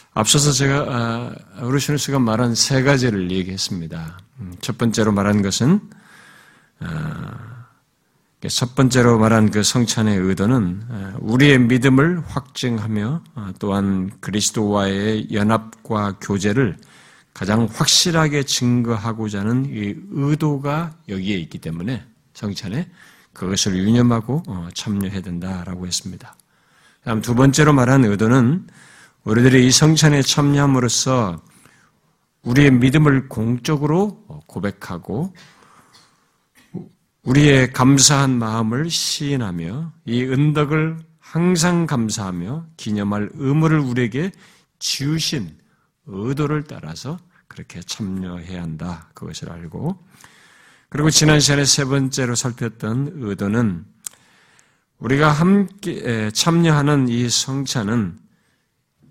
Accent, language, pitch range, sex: native, Korean, 105-150 Hz, male